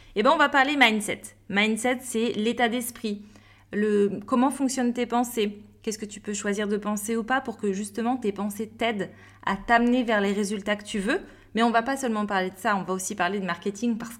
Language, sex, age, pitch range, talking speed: French, female, 20-39, 195-245 Hz, 235 wpm